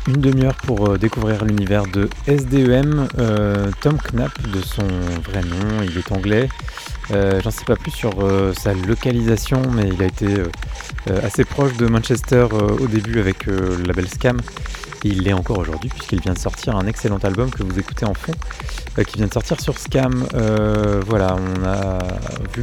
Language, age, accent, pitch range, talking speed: French, 20-39, French, 95-120 Hz, 190 wpm